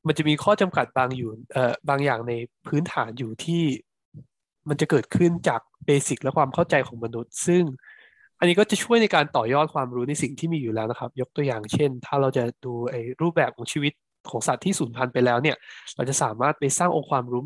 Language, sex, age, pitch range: Thai, male, 20-39, 120-150 Hz